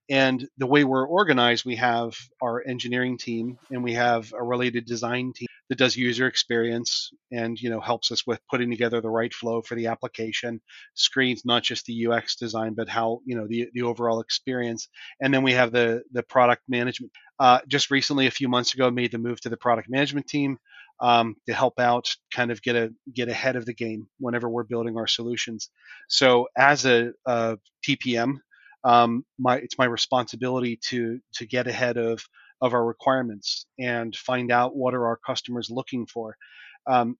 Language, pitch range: English, 115-125 Hz